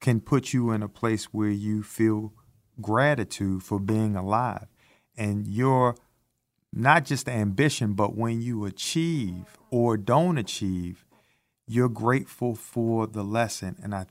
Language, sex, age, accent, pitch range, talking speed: English, male, 50-69, American, 105-130 Hz, 135 wpm